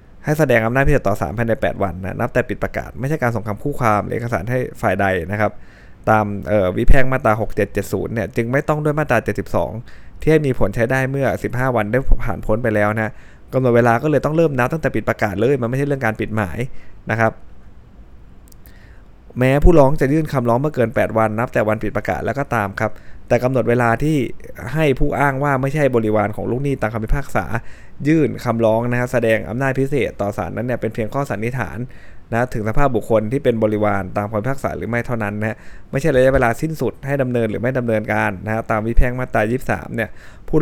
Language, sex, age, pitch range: Thai, male, 20-39, 110-130 Hz